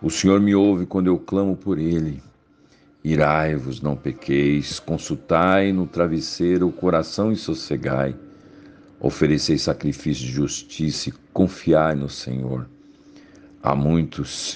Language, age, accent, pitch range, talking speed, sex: Portuguese, 60-79, Brazilian, 70-90 Hz, 120 wpm, male